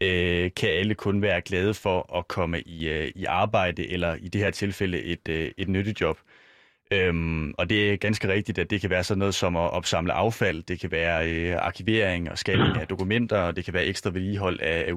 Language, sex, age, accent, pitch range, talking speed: Danish, male, 30-49, native, 90-105 Hz, 205 wpm